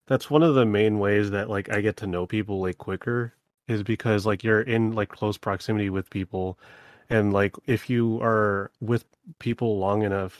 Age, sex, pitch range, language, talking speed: 30-49, male, 95-110 Hz, English, 195 wpm